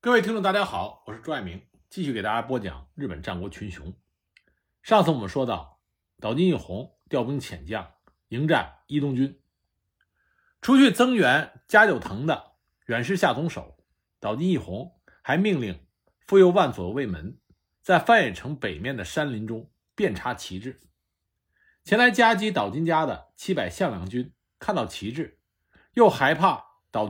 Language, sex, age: Chinese, male, 50-69